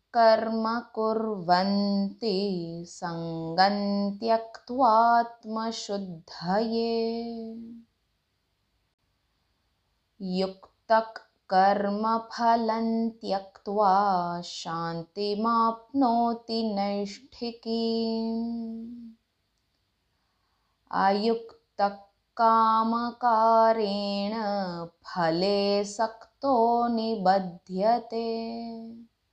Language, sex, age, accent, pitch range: Hindi, female, 20-39, native, 180-225 Hz